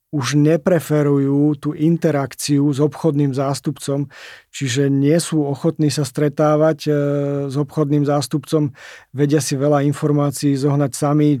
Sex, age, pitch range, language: male, 40-59, 135-150 Hz, Slovak